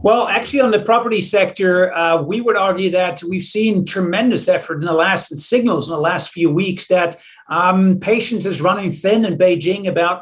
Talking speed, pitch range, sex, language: 195 wpm, 165-190 Hz, male, English